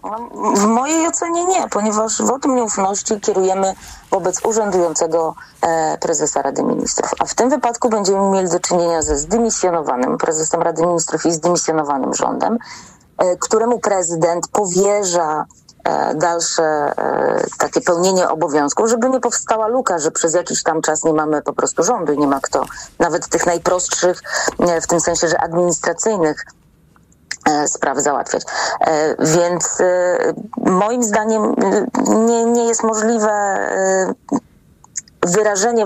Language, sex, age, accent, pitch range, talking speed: Polish, female, 30-49, native, 175-230 Hz, 120 wpm